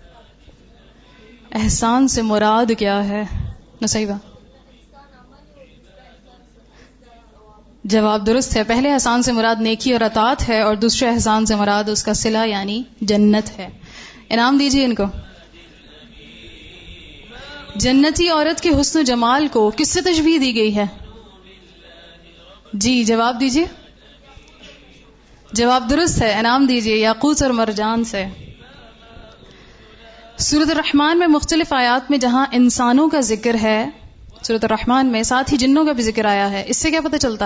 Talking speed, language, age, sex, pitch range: 135 wpm, Urdu, 20-39, female, 220-265 Hz